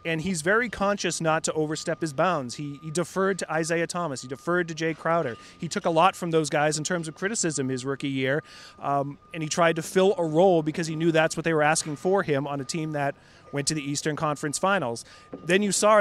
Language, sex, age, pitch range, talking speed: English, male, 30-49, 145-175 Hz, 245 wpm